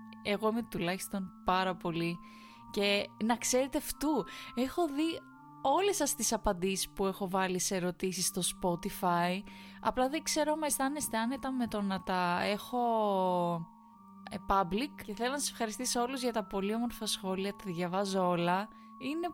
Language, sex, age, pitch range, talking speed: Greek, female, 20-39, 185-230 Hz, 150 wpm